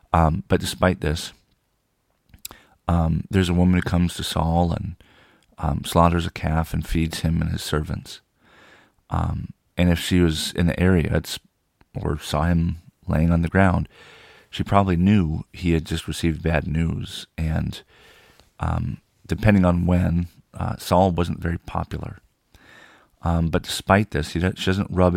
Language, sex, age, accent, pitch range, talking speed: English, male, 40-59, American, 80-90 Hz, 155 wpm